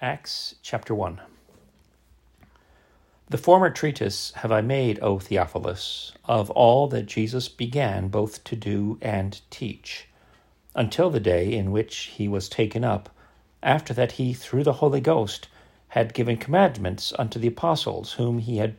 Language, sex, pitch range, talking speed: English, male, 105-145 Hz, 145 wpm